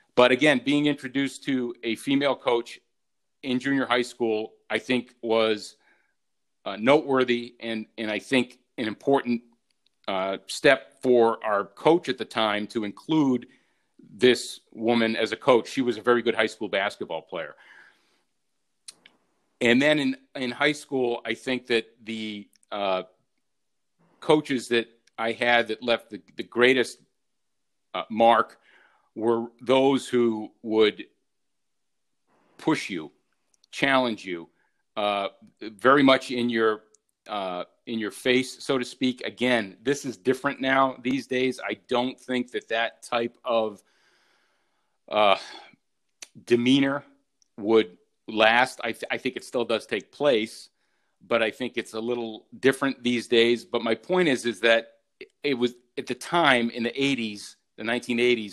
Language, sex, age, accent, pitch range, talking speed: English, male, 40-59, American, 115-130 Hz, 145 wpm